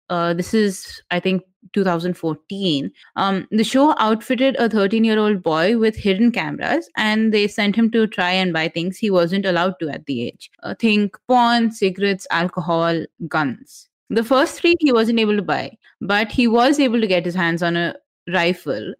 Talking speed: 185 wpm